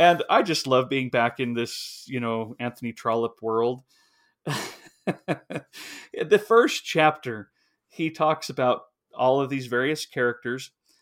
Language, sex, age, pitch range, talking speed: English, male, 40-59, 125-160 Hz, 130 wpm